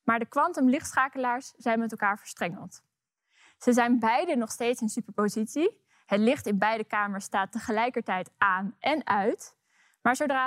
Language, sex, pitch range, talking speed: Dutch, female, 215-270 Hz, 150 wpm